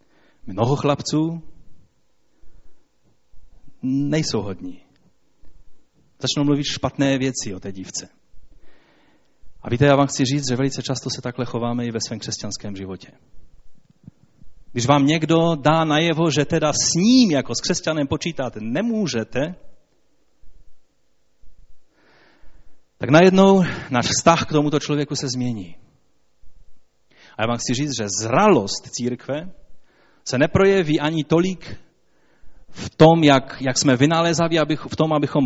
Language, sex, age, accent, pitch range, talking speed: Czech, male, 30-49, native, 120-155 Hz, 120 wpm